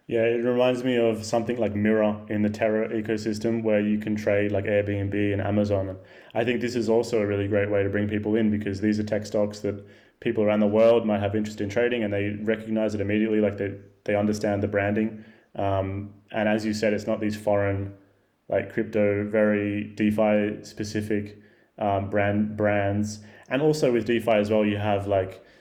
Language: English